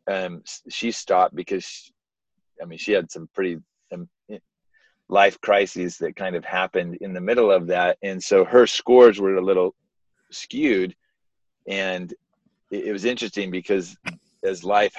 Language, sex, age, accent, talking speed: English, male, 30-49, American, 145 wpm